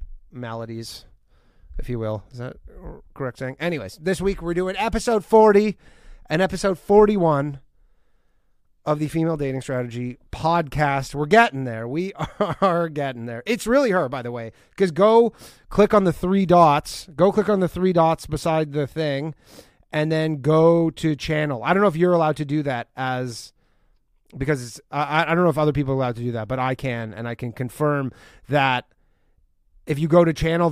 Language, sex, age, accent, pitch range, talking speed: English, male, 30-49, American, 120-170 Hz, 185 wpm